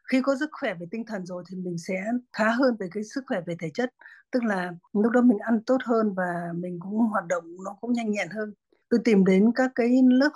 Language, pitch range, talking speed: Vietnamese, 195-240 Hz, 255 wpm